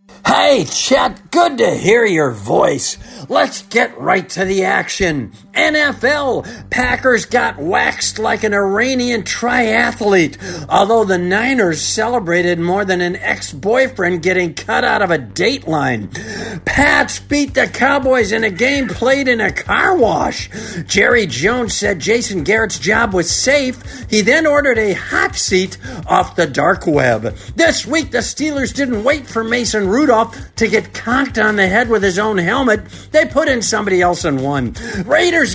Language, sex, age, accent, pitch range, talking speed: English, male, 50-69, American, 200-275 Hz, 155 wpm